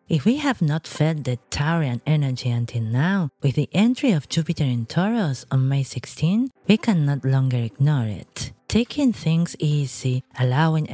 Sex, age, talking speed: female, 30-49, 160 wpm